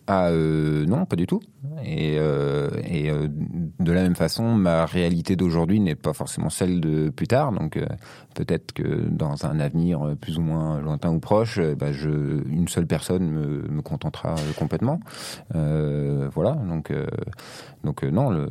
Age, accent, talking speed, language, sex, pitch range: 40-59, French, 180 wpm, French, male, 75-90 Hz